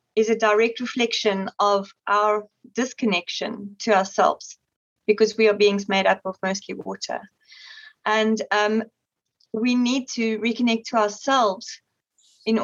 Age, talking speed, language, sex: 30-49, 130 wpm, English, female